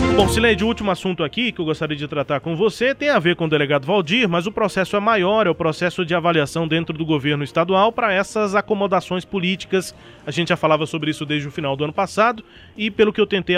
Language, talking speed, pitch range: Portuguese, 245 wpm, 150-195 Hz